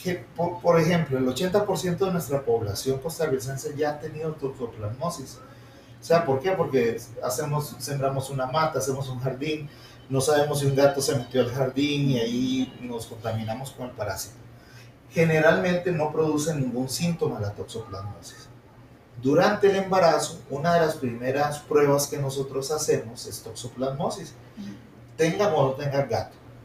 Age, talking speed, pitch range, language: 40-59, 145 wpm, 120-155 Hz, Spanish